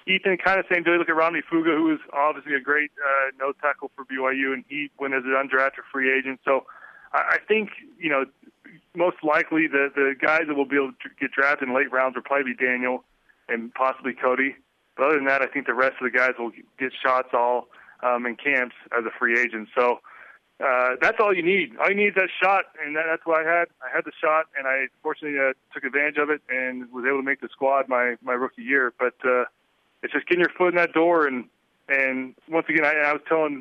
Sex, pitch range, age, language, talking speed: male, 130-155 Hz, 20-39, English, 245 wpm